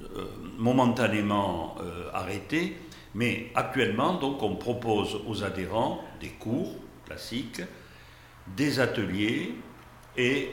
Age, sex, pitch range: 60-79, male, 100-130 Hz